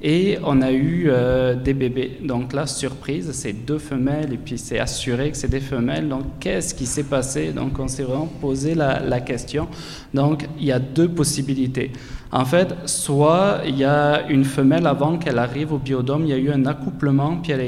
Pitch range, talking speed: 130-150 Hz, 210 wpm